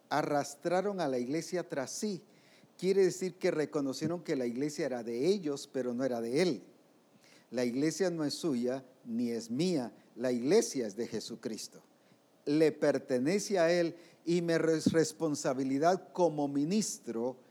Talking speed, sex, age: 145 wpm, male, 50-69